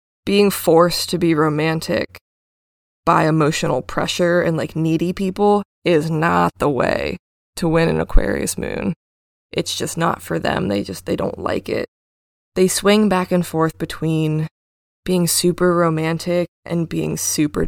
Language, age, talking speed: English, 20-39, 150 wpm